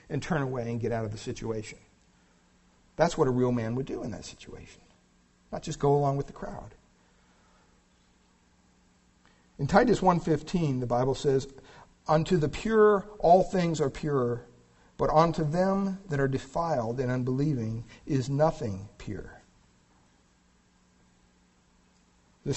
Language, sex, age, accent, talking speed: English, male, 50-69, American, 140 wpm